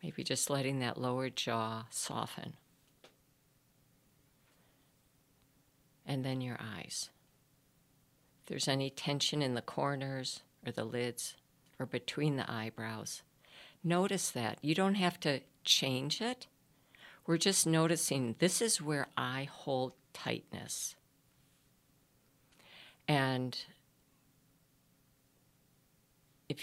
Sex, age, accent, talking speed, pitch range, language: female, 50-69, American, 100 wpm, 130-155 Hz, English